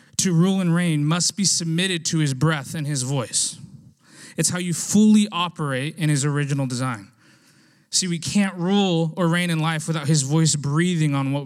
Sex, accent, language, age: male, American, English, 20-39